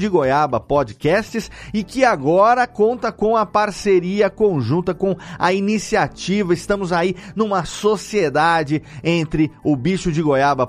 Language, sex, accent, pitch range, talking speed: Portuguese, male, Brazilian, 145-205 Hz, 130 wpm